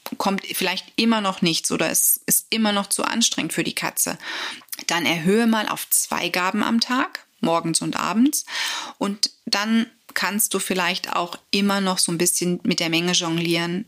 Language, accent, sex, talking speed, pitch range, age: German, German, female, 175 wpm, 175-230 Hz, 30-49